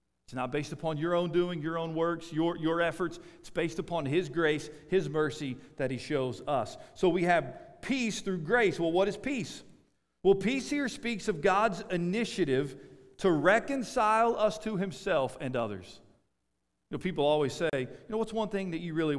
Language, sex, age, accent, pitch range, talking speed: English, male, 40-59, American, 130-205 Hz, 190 wpm